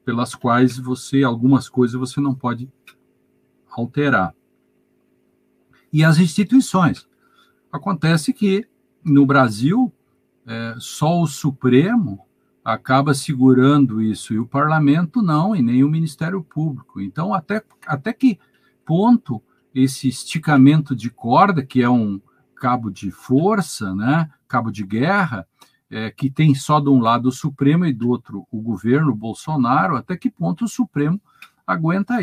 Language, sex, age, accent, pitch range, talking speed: Portuguese, male, 50-69, Brazilian, 120-160 Hz, 130 wpm